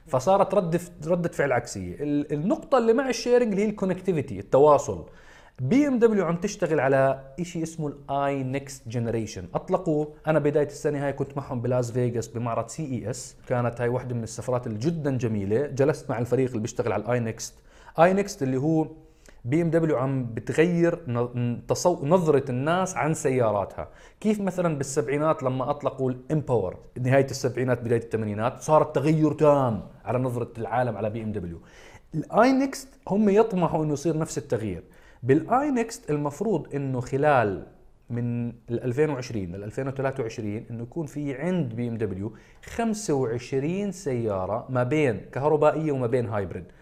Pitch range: 120-165 Hz